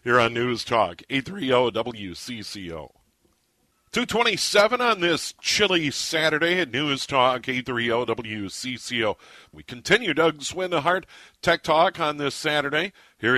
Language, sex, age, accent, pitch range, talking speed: English, male, 50-69, American, 125-155 Hz, 115 wpm